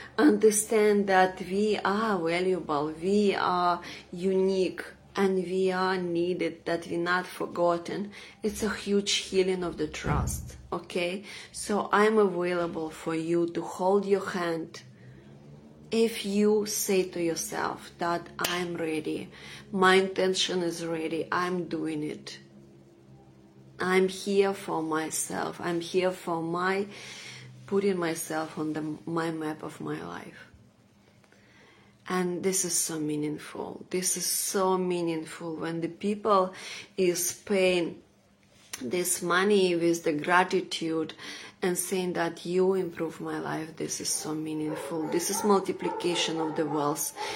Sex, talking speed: female, 130 wpm